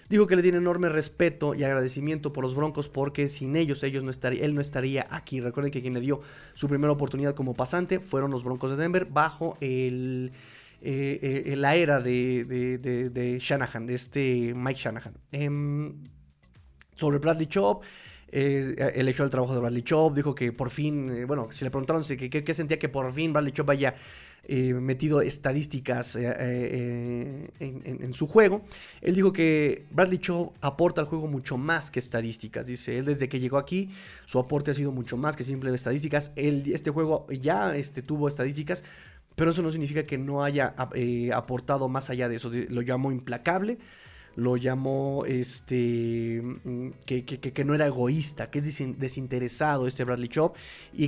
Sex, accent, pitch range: male, Mexican, 125-150 Hz